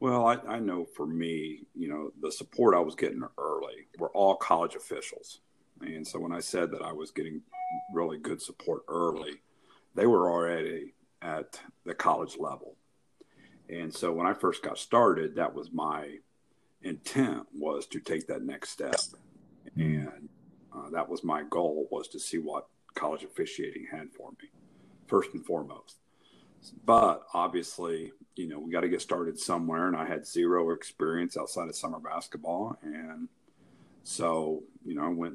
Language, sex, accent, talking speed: English, male, American, 165 wpm